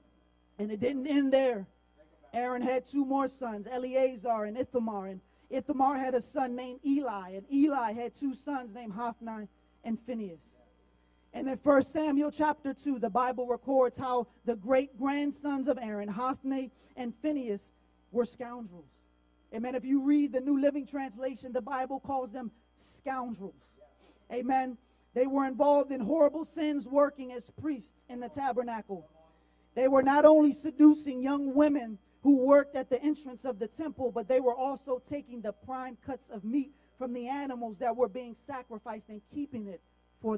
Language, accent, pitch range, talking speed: English, American, 230-275 Hz, 165 wpm